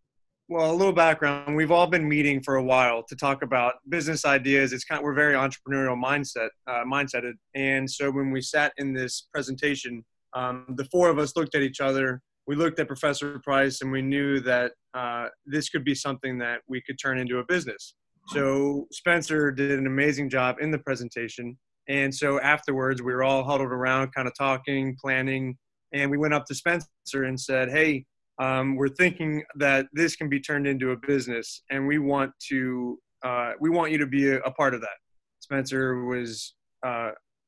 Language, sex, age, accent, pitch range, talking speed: English, male, 20-39, American, 130-145 Hz, 195 wpm